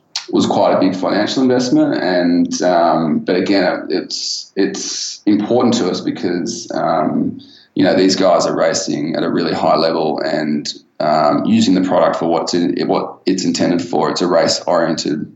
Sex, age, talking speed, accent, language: male, 20-39, 170 wpm, Australian, English